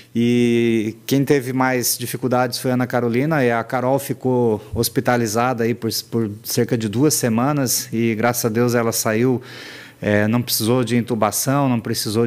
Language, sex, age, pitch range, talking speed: Portuguese, male, 30-49, 115-135 Hz, 165 wpm